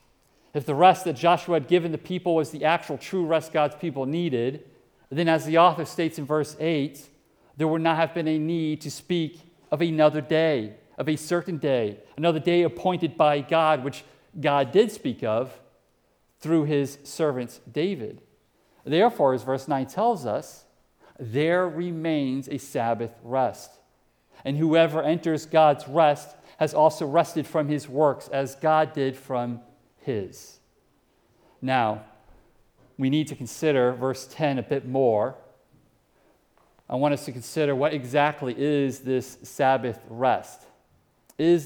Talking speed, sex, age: 150 wpm, male, 50-69